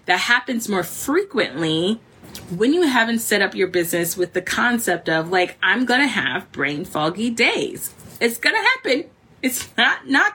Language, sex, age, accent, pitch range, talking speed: English, female, 20-39, American, 175-235 Hz, 160 wpm